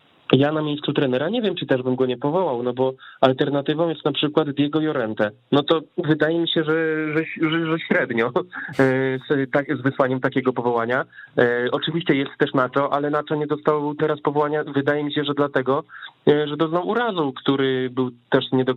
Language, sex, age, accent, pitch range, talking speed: Polish, male, 20-39, native, 115-145 Hz, 190 wpm